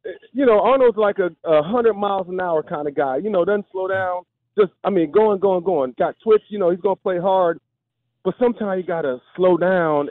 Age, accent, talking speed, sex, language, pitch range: 40-59, American, 220 wpm, male, English, 150-205 Hz